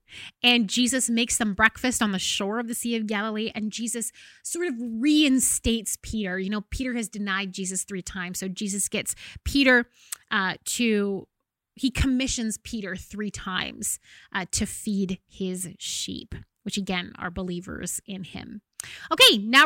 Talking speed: 155 wpm